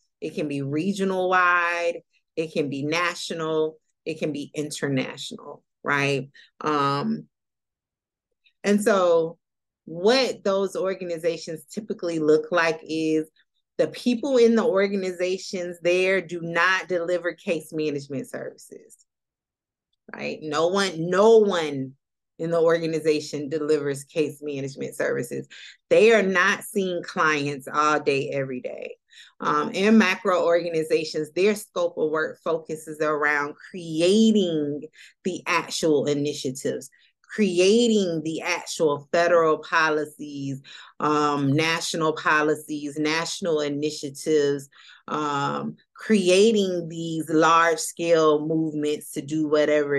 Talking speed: 105 wpm